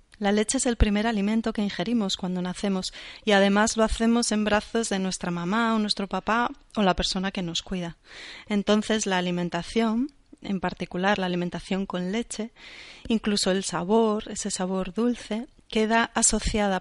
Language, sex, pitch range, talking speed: Spanish, female, 190-220 Hz, 160 wpm